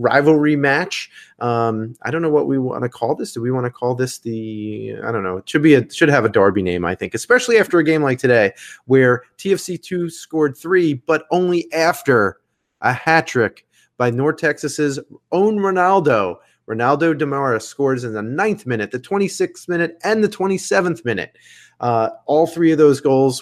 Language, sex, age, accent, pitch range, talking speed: English, male, 30-49, American, 115-150 Hz, 190 wpm